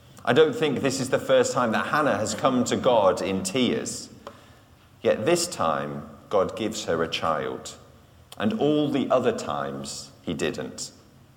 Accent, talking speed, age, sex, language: British, 165 wpm, 40-59, male, English